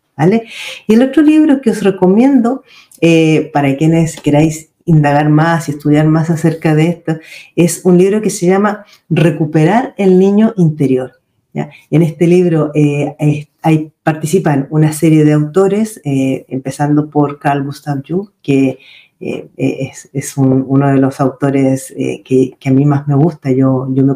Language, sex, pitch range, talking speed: Spanish, female, 145-175 Hz, 170 wpm